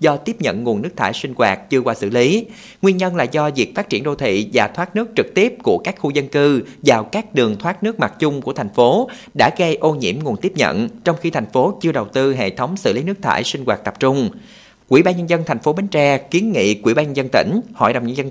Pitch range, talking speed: 125-195 Hz, 275 wpm